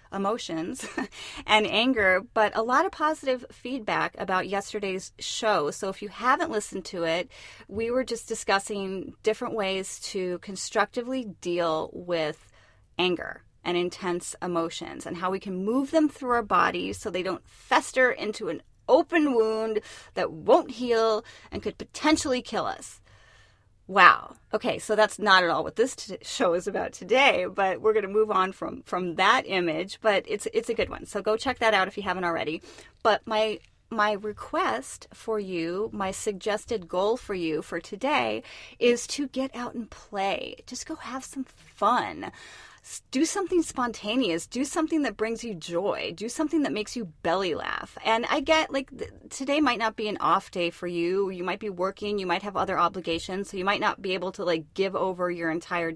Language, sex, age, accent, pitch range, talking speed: English, female, 30-49, American, 185-245 Hz, 185 wpm